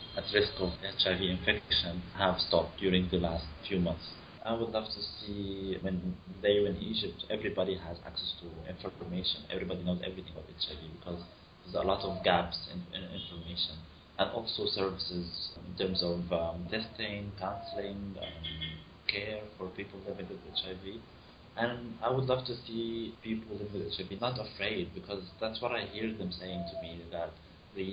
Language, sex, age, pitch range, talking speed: English, male, 30-49, 85-100 Hz, 175 wpm